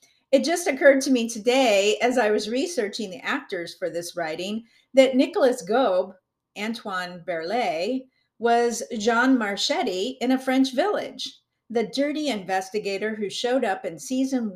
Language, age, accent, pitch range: English, 50-69, American, 185-260 Hz